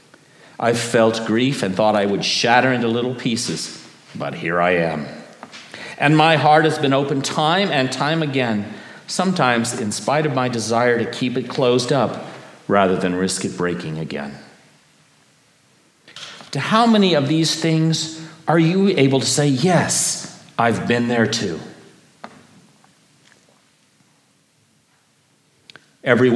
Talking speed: 135 wpm